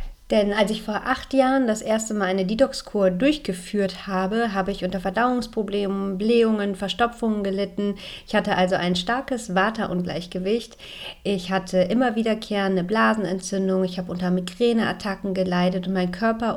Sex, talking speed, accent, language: female, 145 wpm, German, German